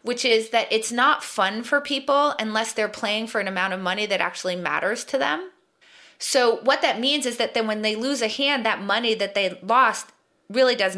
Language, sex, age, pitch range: English, female, 30-49, 185-245 Hz